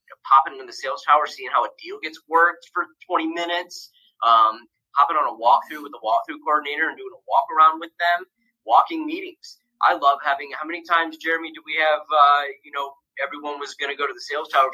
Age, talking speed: 30-49, 220 wpm